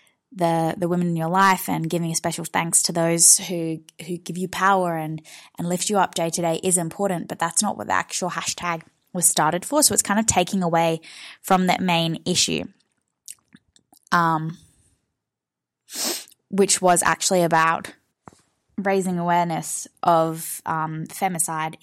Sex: female